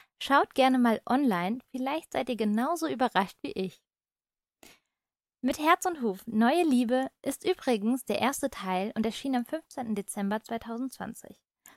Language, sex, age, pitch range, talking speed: German, female, 20-39, 205-255 Hz, 145 wpm